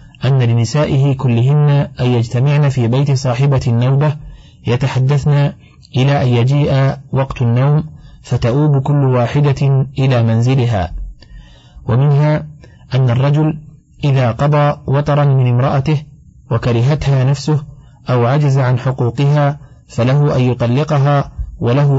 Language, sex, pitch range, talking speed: Arabic, male, 120-145 Hz, 105 wpm